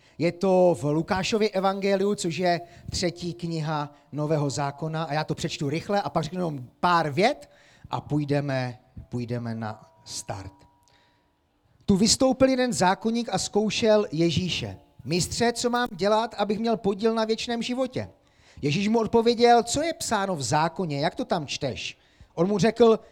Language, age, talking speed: Czech, 40-59, 155 wpm